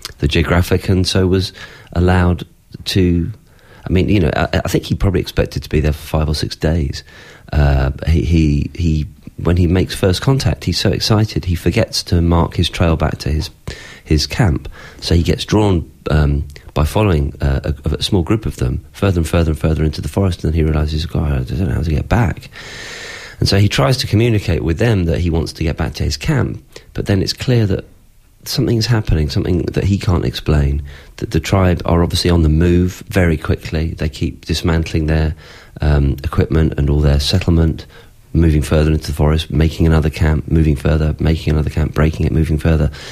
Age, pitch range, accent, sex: 40-59, 75-95 Hz, British, male